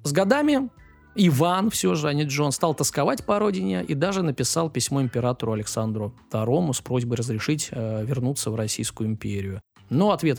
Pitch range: 110-165 Hz